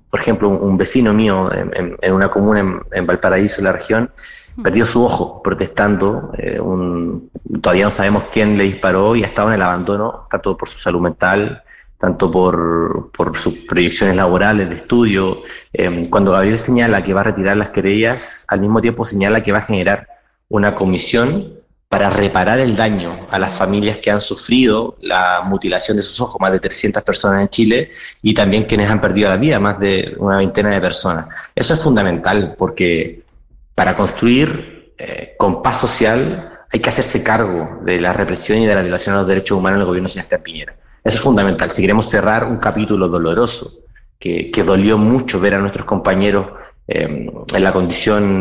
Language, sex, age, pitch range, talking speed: Spanish, male, 30-49, 95-105 Hz, 190 wpm